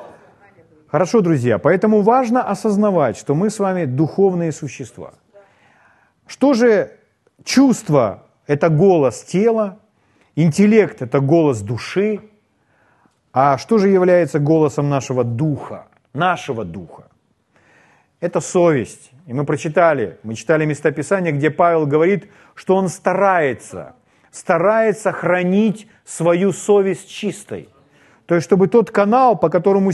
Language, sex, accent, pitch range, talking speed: Russian, male, native, 145-205 Hz, 110 wpm